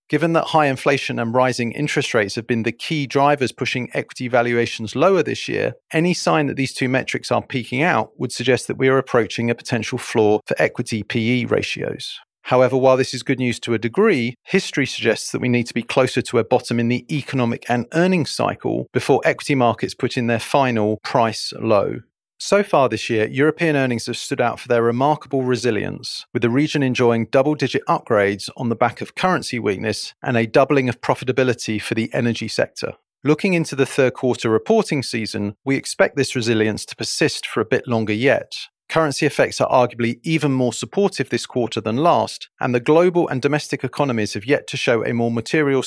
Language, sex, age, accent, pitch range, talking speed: English, male, 40-59, British, 115-145 Hz, 200 wpm